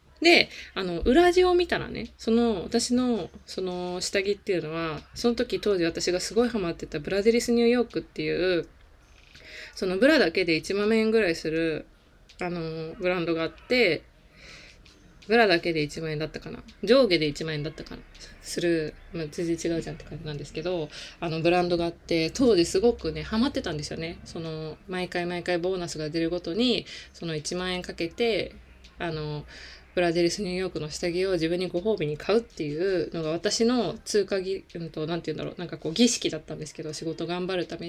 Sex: female